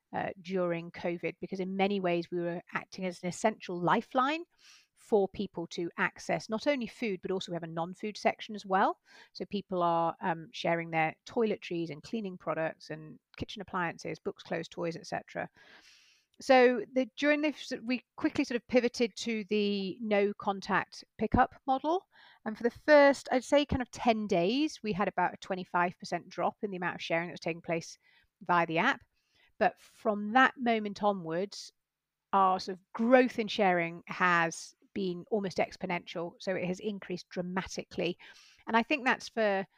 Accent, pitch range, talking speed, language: British, 175-230 Hz, 170 wpm, English